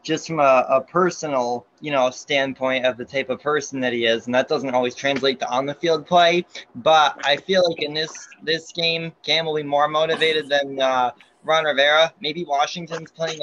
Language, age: English, 20-39